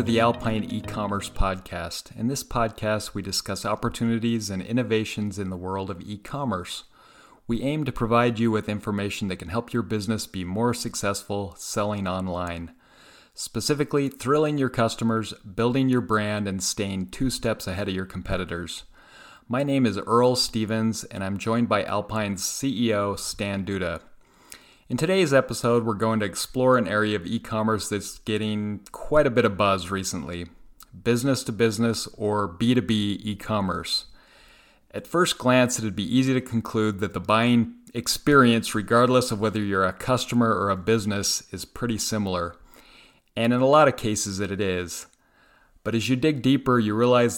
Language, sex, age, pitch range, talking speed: English, male, 30-49, 100-120 Hz, 155 wpm